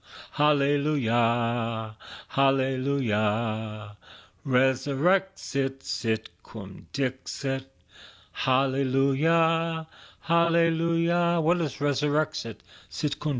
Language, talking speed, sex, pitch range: English, 65 wpm, male, 115-165 Hz